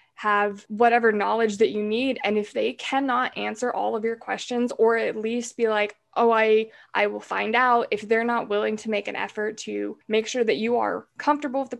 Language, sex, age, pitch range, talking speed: English, female, 20-39, 210-240 Hz, 220 wpm